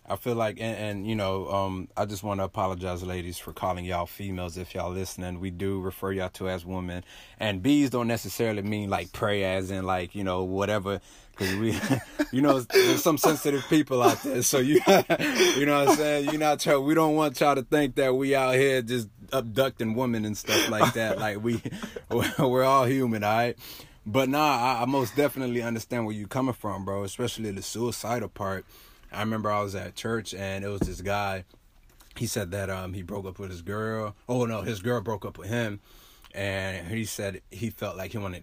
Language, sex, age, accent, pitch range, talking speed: English, male, 20-39, American, 95-120 Hz, 215 wpm